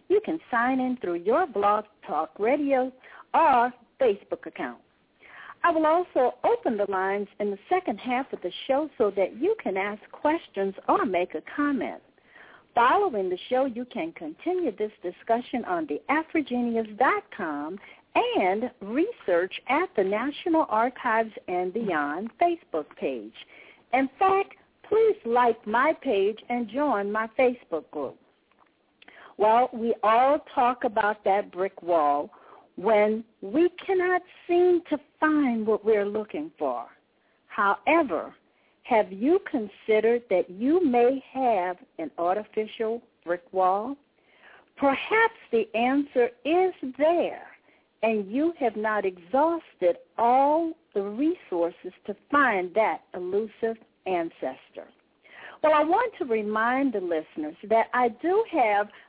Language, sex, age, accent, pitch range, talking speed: English, female, 60-79, American, 205-310 Hz, 130 wpm